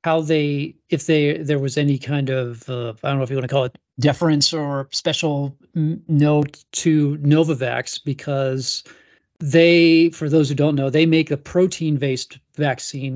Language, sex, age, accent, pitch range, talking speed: English, male, 40-59, American, 135-155 Hz, 170 wpm